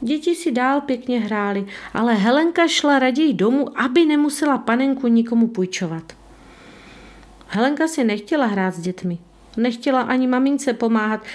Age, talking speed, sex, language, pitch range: 40-59, 130 wpm, female, Czech, 185-280 Hz